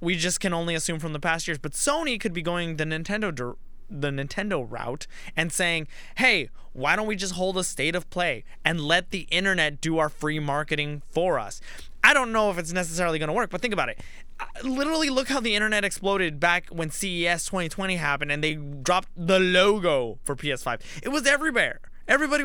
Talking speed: 205 wpm